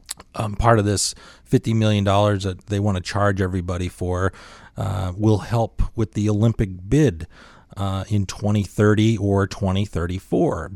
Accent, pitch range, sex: American, 95-115 Hz, male